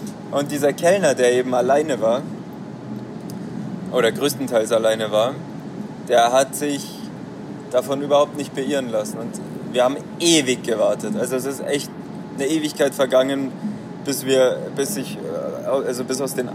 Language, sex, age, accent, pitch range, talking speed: German, male, 20-39, German, 125-175 Hz, 125 wpm